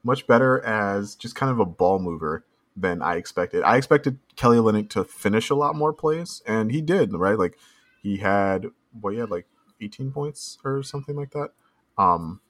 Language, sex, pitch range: English, male, 90-115 Hz